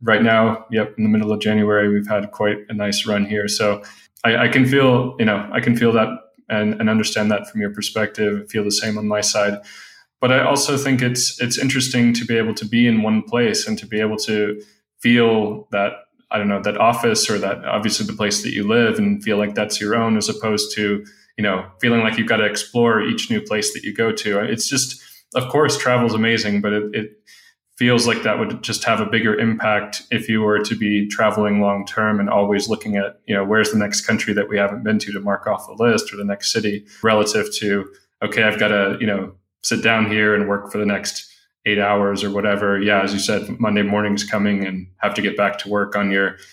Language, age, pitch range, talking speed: English, 20-39, 100-110 Hz, 240 wpm